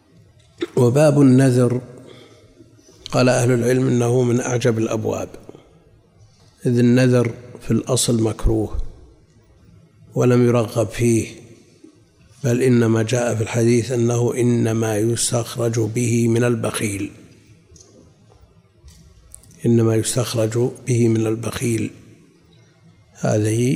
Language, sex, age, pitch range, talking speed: Arabic, male, 50-69, 110-125 Hz, 85 wpm